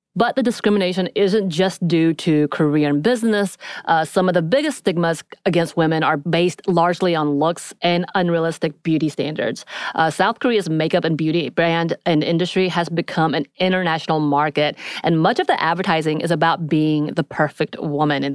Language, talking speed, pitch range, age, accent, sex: English, 175 wpm, 155-185 Hz, 30-49, American, female